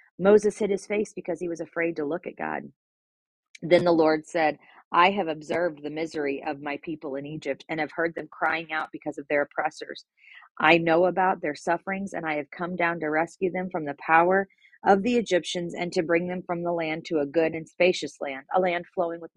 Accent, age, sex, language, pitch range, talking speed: American, 40-59, female, English, 155-185 Hz, 225 wpm